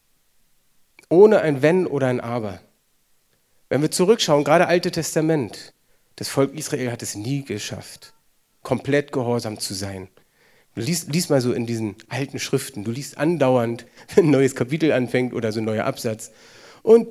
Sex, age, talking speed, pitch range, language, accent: male, 40-59, 160 wpm, 130-195 Hz, German, German